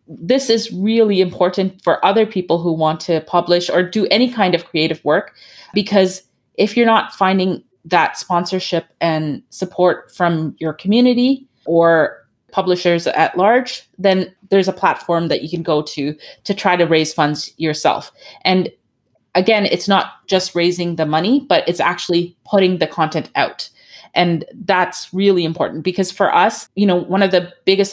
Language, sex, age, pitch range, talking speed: English, female, 30-49, 160-190 Hz, 165 wpm